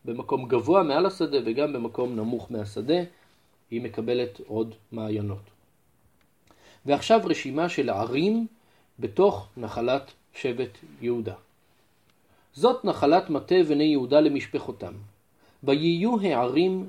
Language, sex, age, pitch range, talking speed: Hebrew, male, 40-59, 120-165 Hz, 95 wpm